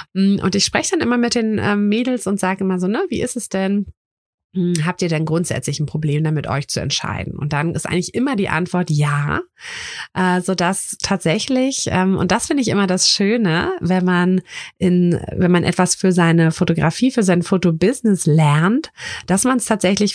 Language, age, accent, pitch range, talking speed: German, 30-49, German, 165-200 Hz, 185 wpm